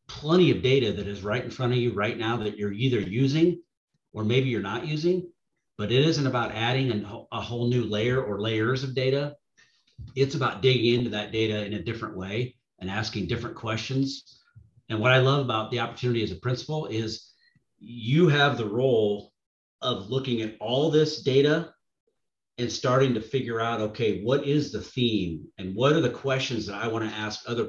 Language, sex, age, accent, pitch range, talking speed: English, male, 40-59, American, 110-135 Hz, 195 wpm